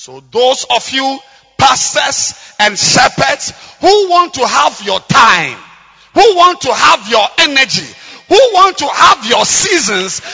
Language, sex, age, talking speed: English, male, 50-69, 145 wpm